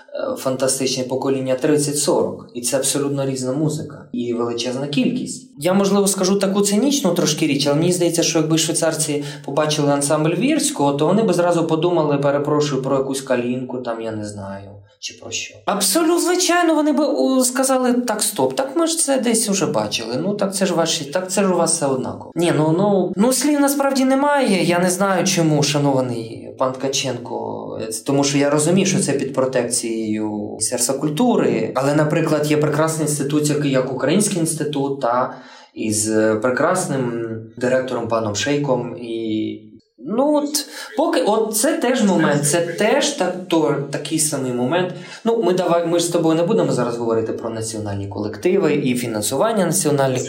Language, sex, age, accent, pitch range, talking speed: Ukrainian, male, 20-39, native, 125-180 Hz, 165 wpm